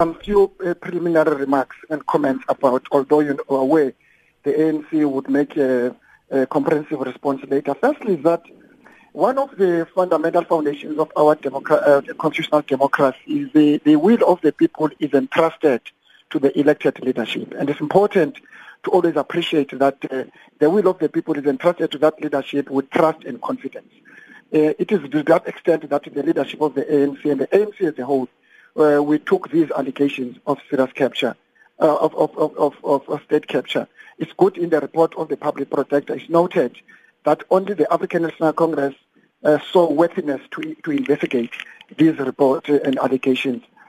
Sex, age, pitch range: male, 50-69, 140-170 Hz